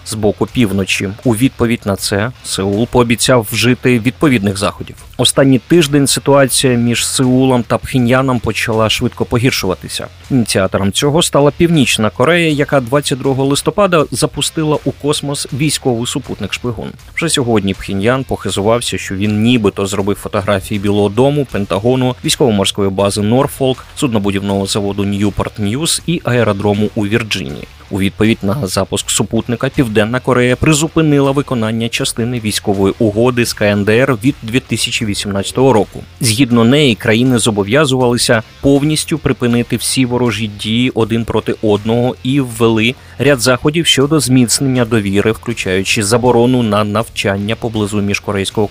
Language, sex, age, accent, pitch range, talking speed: Ukrainian, male, 30-49, native, 105-130 Hz, 125 wpm